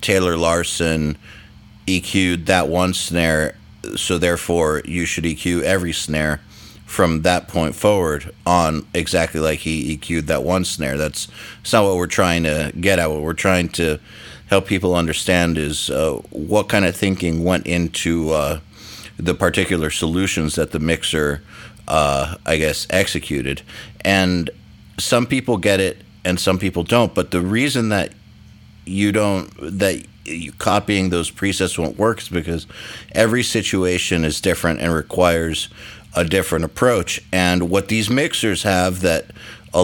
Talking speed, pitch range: 150 wpm, 80-100 Hz